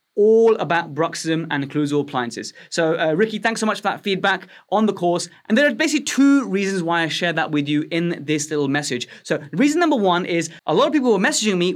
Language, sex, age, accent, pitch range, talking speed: English, male, 20-39, British, 150-185 Hz, 235 wpm